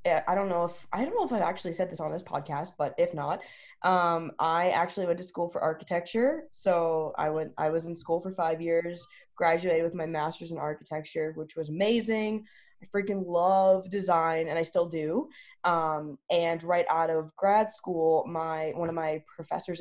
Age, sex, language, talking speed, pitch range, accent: 20-39, female, English, 210 wpm, 155-195 Hz, American